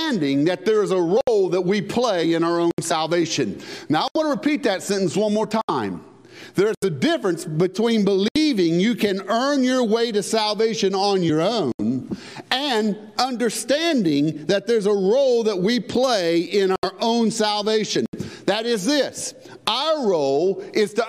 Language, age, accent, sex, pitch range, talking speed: English, 50-69, American, male, 195-270 Hz, 160 wpm